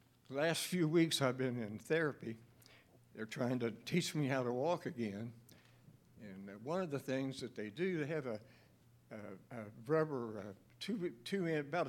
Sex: male